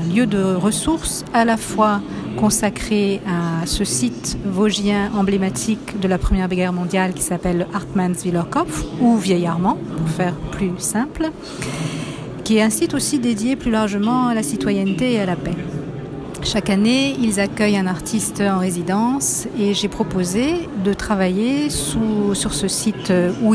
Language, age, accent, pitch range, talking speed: French, 50-69, French, 180-220 Hz, 150 wpm